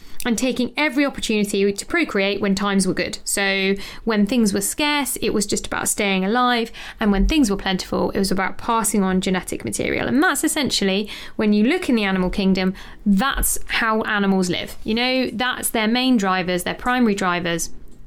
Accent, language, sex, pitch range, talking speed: British, English, female, 200-255 Hz, 185 wpm